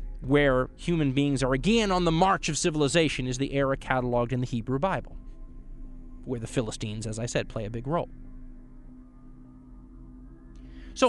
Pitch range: 120-170 Hz